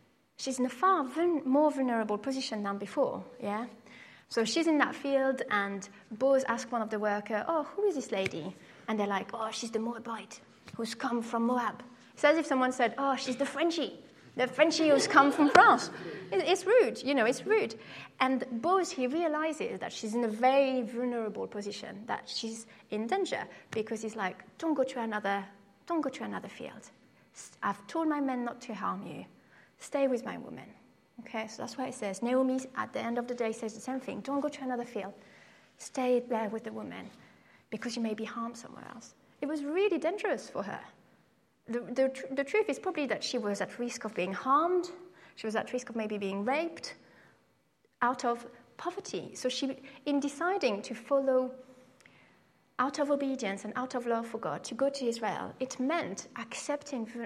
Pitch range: 225-280 Hz